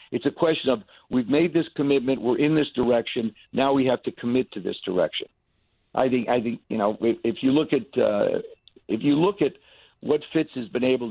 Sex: male